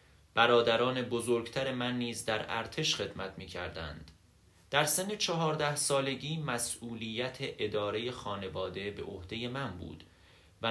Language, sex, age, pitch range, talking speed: Persian, male, 30-49, 100-135 Hz, 120 wpm